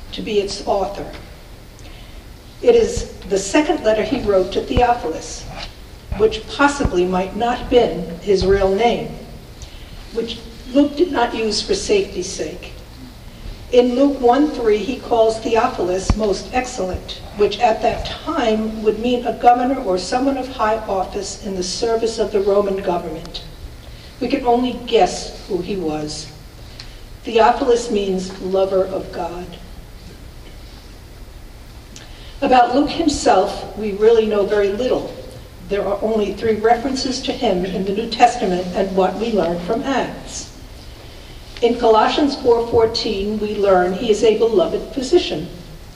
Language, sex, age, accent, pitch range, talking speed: English, female, 50-69, American, 195-245 Hz, 135 wpm